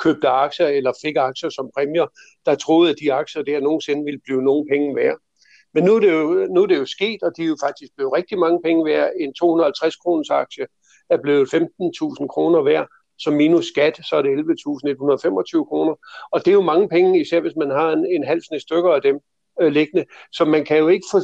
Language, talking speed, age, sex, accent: Danish, 225 wpm, 60-79, male, native